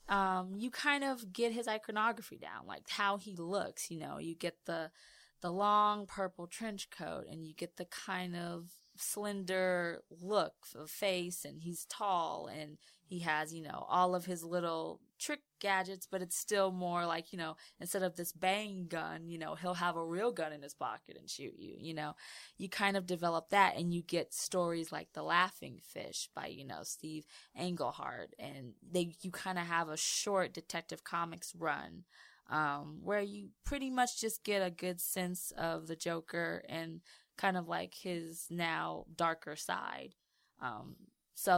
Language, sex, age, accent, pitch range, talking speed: English, female, 20-39, American, 160-190 Hz, 180 wpm